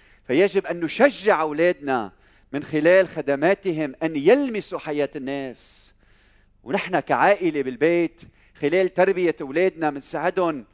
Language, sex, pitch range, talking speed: Arabic, male, 150-210 Hz, 105 wpm